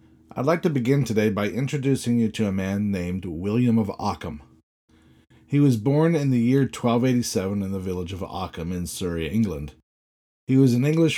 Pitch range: 95-135 Hz